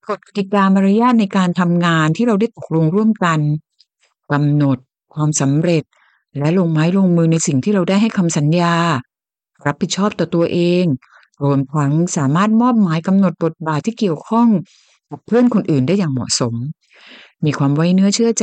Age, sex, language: 60-79, female, Thai